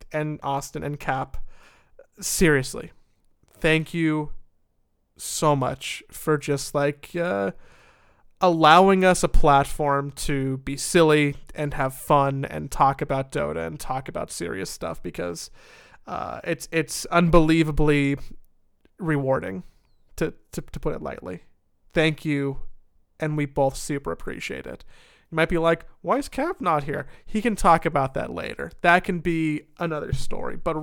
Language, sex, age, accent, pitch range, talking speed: English, male, 30-49, American, 140-185 Hz, 140 wpm